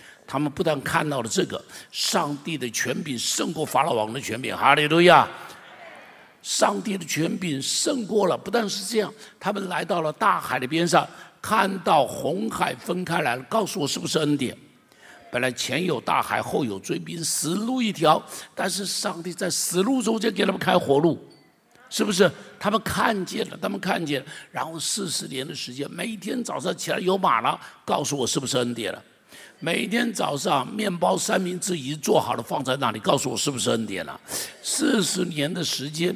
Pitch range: 145-200 Hz